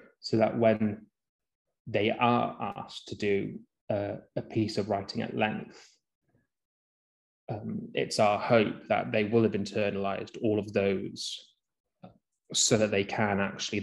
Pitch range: 105-120 Hz